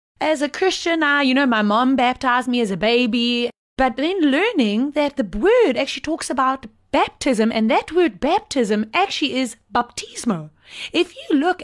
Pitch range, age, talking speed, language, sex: 245-340 Hz, 20-39, 170 wpm, English, female